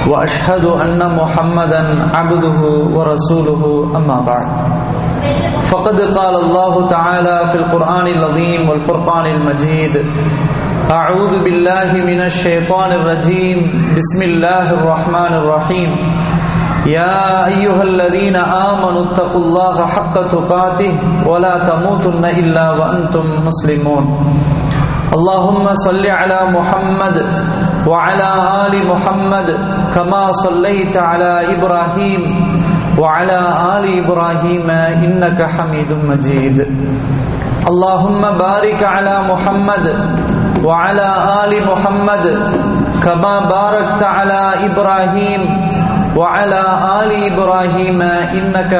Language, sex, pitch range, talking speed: English, male, 160-190 Hz, 85 wpm